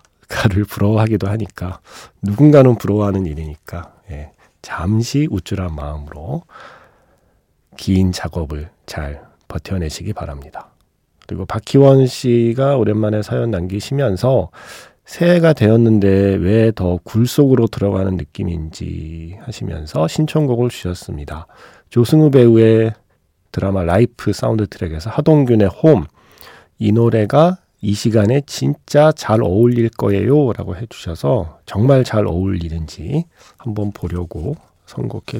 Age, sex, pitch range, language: 40-59, male, 90-115 Hz, Korean